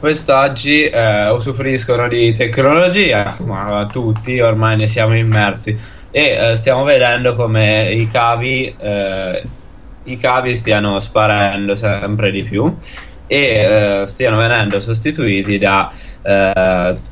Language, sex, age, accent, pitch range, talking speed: Italian, male, 20-39, native, 100-115 Hz, 110 wpm